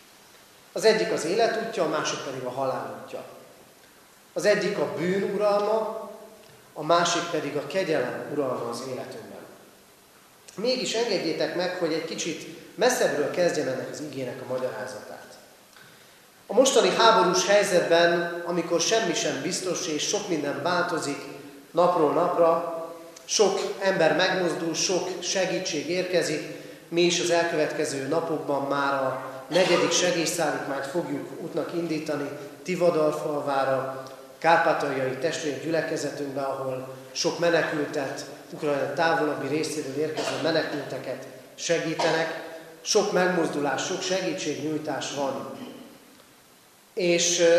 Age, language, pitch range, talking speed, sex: 40-59, Hungarian, 150-180 Hz, 110 wpm, male